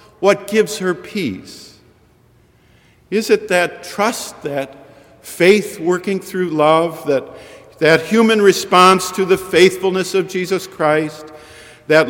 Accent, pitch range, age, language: American, 135-175 Hz, 50-69, English